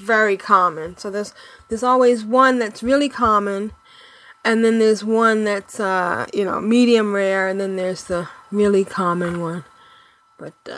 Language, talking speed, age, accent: English, 155 wpm, 20-39, American